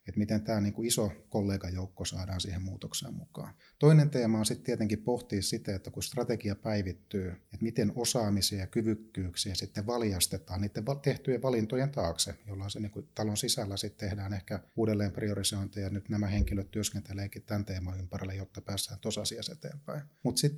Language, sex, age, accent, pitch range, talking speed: English, male, 30-49, Finnish, 95-110 Hz, 155 wpm